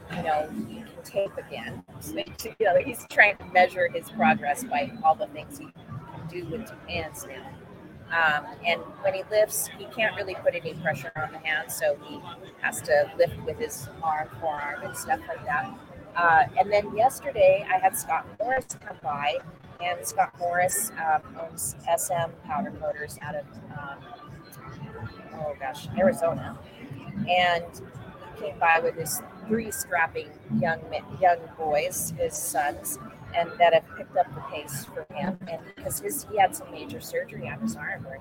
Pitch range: 160-225 Hz